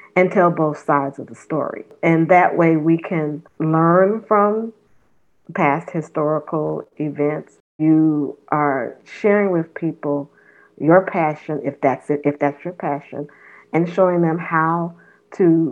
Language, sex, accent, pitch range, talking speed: English, female, American, 155-190 Hz, 135 wpm